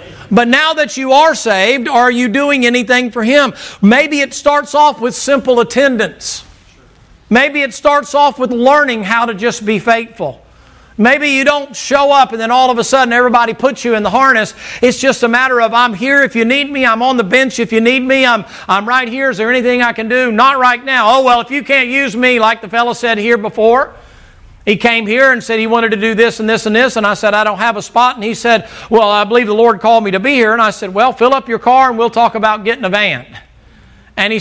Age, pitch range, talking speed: 50-69, 205-255 Hz, 250 wpm